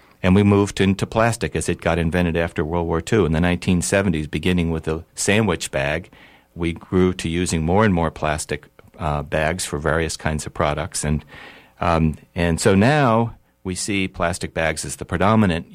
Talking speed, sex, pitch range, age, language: 185 wpm, male, 80-95 Hz, 60-79, English